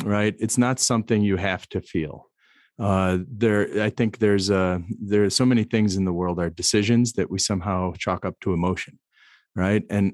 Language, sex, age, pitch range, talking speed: German, male, 40-59, 95-125 Hz, 195 wpm